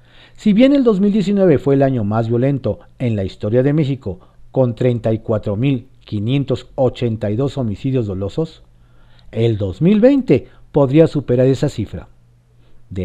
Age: 50-69